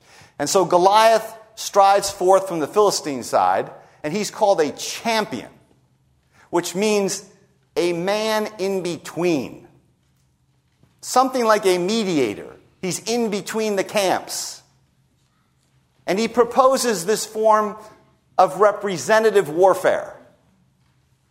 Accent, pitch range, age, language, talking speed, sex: American, 150-210 Hz, 50-69, English, 105 wpm, male